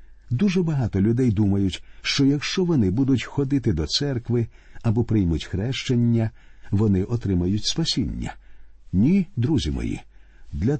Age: 50-69